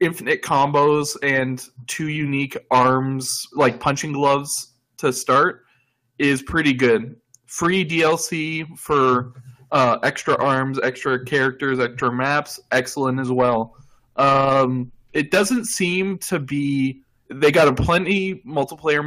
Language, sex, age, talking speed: English, male, 20-39, 120 wpm